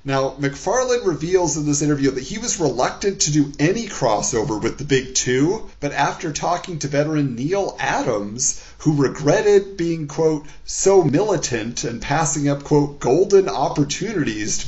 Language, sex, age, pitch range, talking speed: English, male, 30-49, 135-185 Hz, 155 wpm